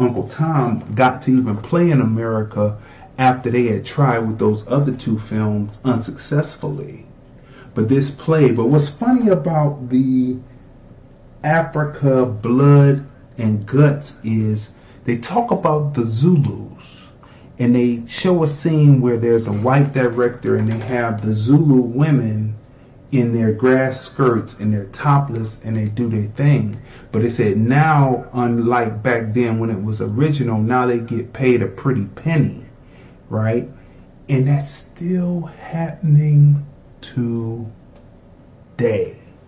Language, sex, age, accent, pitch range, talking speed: English, male, 40-59, American, 115-145 Hz, 135 wpm